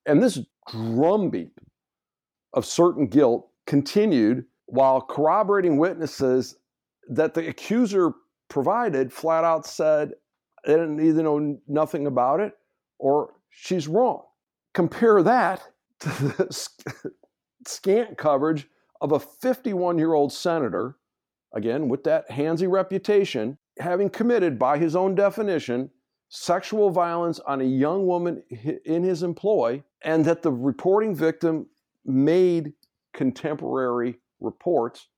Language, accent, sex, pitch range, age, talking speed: English, American, male, 130-175 Hz, 60-79, 115 wpm